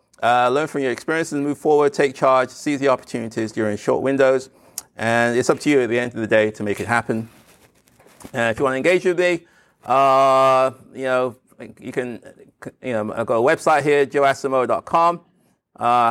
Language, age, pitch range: English, 30-49, 120-150 Hz